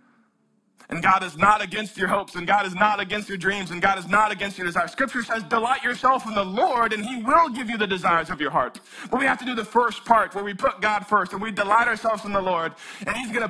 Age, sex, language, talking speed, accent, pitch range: 20-39, male, English, 275 wpm, American, 165-225 Hz